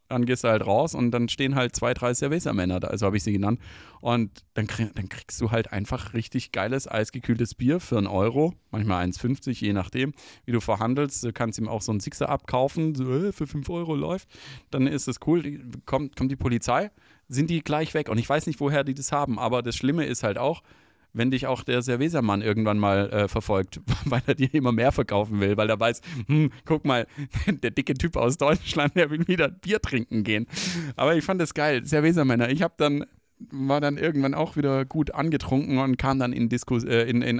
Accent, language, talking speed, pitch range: German, German, 215 wpm, 115-145 Hz